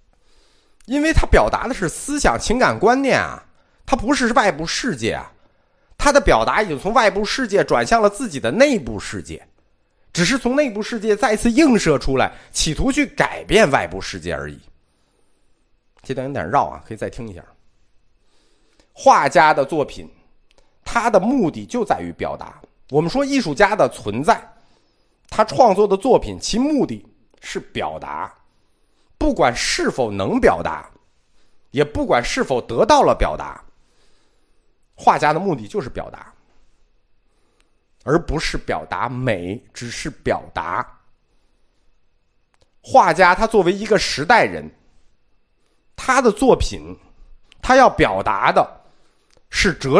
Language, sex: Chinese, male